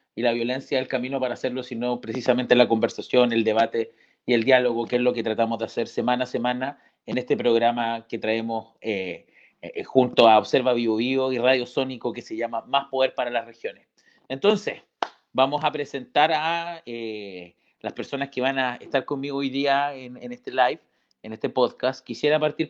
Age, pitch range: 40-59, 115-135 Hz